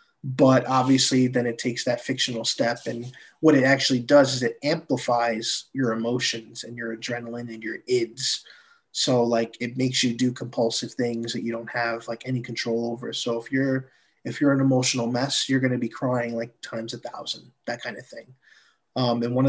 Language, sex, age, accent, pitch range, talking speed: English, male, 20-39, American, 120-135 Hz, 195 wpm